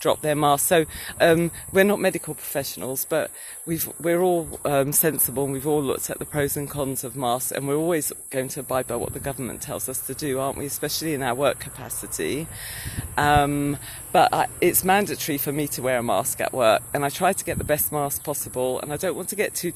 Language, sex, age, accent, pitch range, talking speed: English, female, 40-59, British, 135-160 Hz, 230 wpm